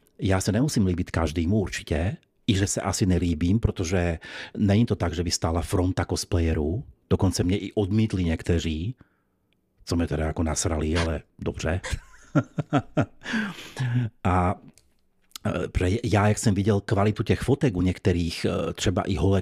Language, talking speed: Czech, 150 wpm